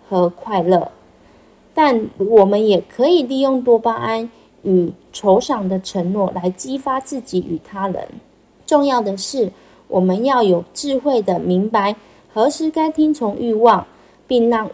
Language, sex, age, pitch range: Chinese, female, 20-39, 190-250 Hz